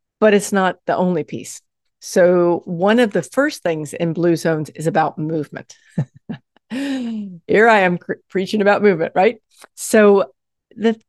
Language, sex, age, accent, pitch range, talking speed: English, female, 50-69, American, 165-215 Hz, 145 wpm